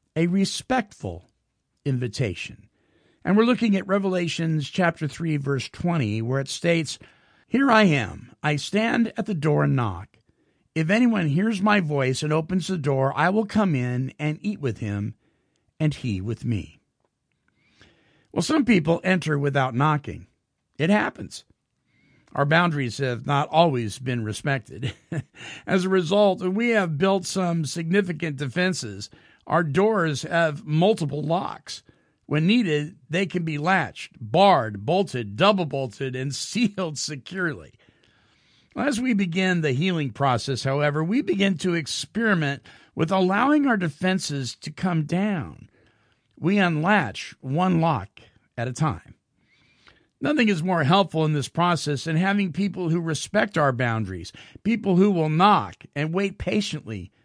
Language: English